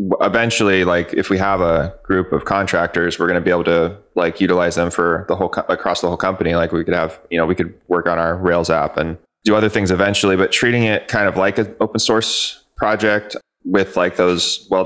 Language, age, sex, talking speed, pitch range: English, 20-39, male, 230 wpm, 85-105 Hz